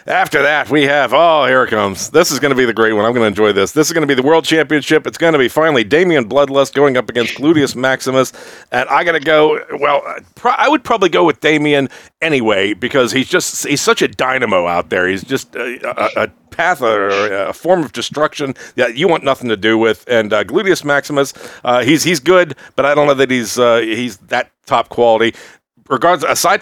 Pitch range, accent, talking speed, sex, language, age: 120-155 Hz, American, 230 wpm, male, English, 40-59